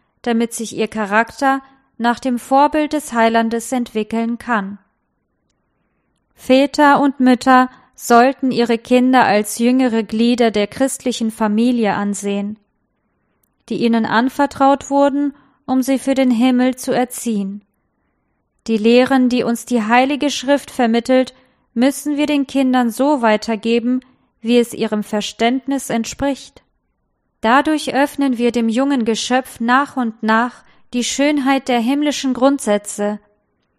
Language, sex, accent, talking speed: German, female, German, 120 wpm